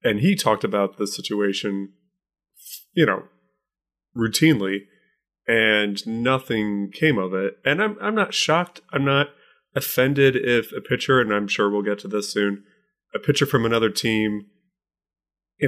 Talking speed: 150 wpm